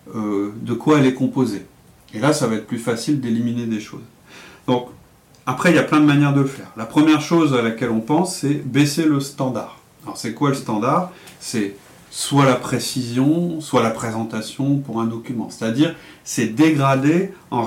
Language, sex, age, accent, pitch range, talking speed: French, male, 40-59, French, 105-140 Hz, 190 wpm